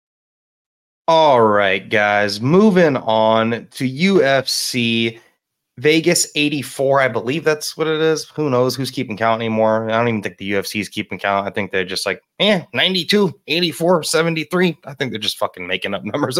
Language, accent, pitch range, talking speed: English, American, 110-150 Hz, 170 wpm